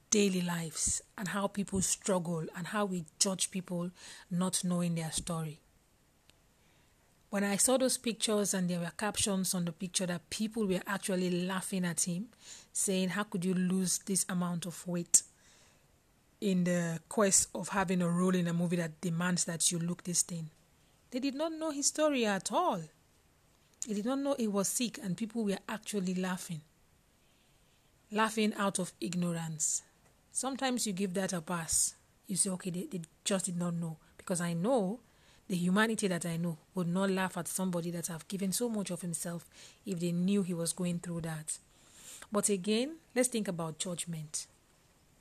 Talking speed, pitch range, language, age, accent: 175 wpm, 175-205 Hz, English, 40-59, Nigerian